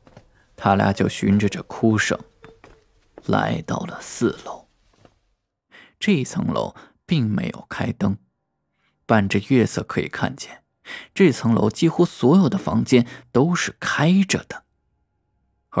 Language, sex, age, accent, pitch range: Chinese, male, 20-39, native, 95-130 Hz